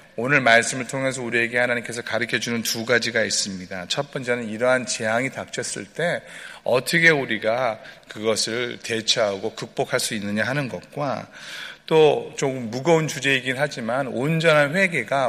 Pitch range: 115-145 Hz